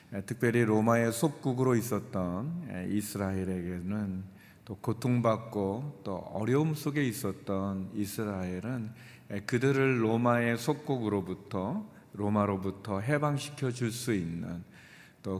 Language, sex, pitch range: Korean, male, 100-120 Hz